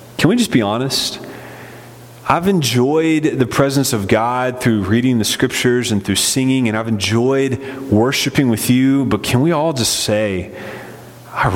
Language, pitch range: English, 110-140 Hz